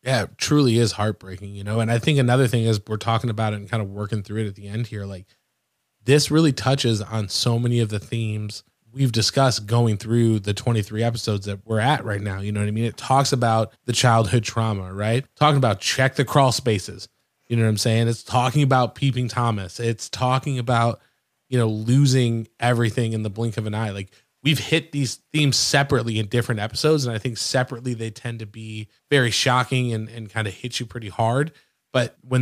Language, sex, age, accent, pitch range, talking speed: English, male, 20-39, American, 110-130 Hz, 220 wpm